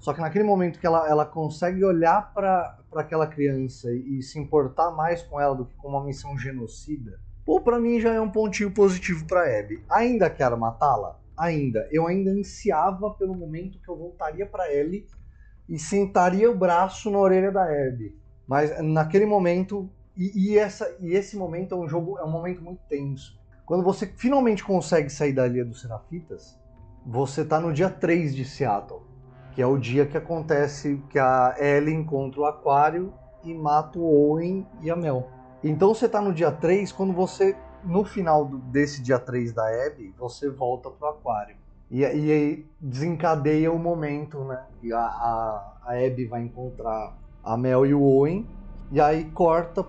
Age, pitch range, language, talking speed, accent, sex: 20-39, 130-180 Hz, Portuguese, 180 wpm, Brazilian, male